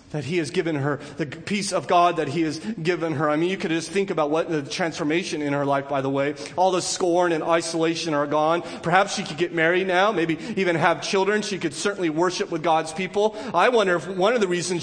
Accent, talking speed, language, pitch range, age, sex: American, 245 wpm, English, 175-220 Hz, 30-49, male